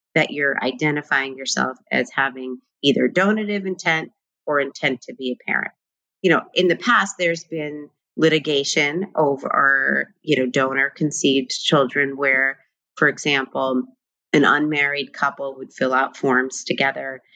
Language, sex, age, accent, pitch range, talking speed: English, female, 30-49, American, 135-170 Hz, 135 wpm